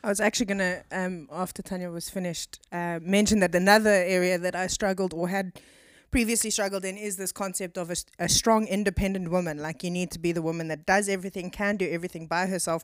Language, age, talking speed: English, 20-39, 220 wpm